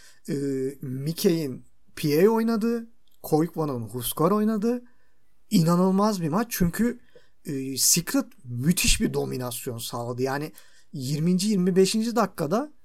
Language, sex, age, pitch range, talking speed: Turkish, male, 50-69, 140-215 Hz, 100 wpm